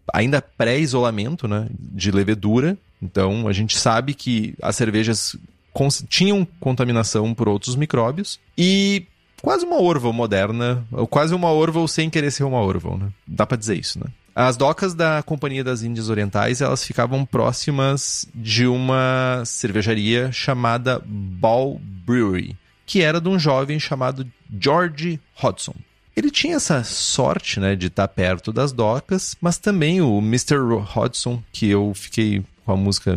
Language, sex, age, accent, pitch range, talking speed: Portuguese, male, 30-49, Brazilian, 110-160 Hz, 150 wpm